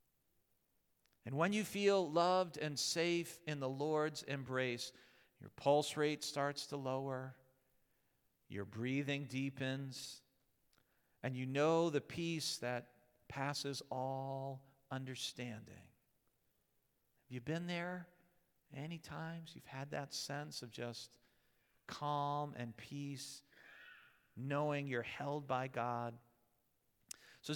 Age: 50-69